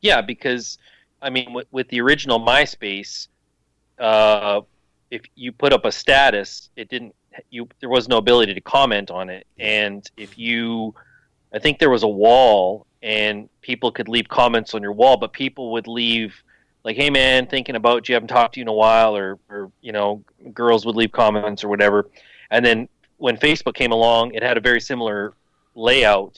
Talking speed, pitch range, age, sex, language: 190 wpm, 105-130 Hz, 30-49, male, English